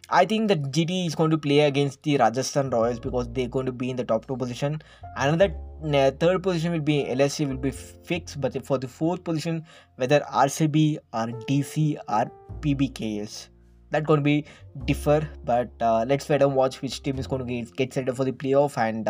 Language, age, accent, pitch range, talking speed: English, 20-39, Indian, 125-145 Hz, 220 wpm